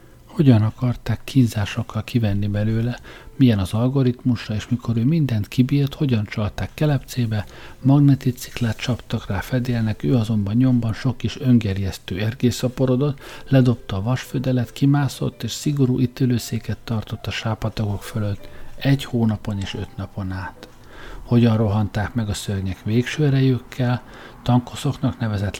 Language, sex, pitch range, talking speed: Hungarian, male, 105-130 Hz, 125 wpm